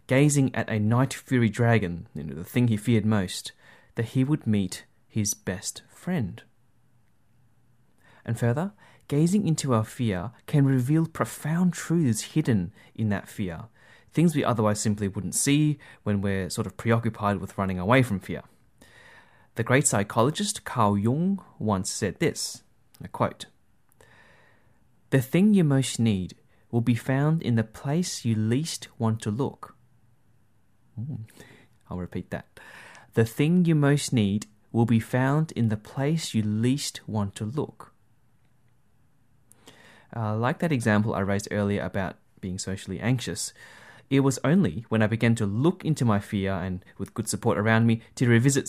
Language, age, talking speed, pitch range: English, 30-49, 155 wpm, 105-135 Hz